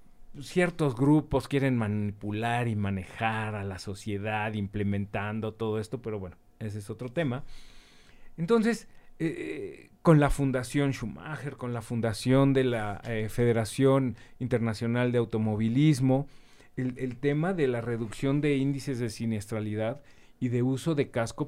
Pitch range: 115-165 Hz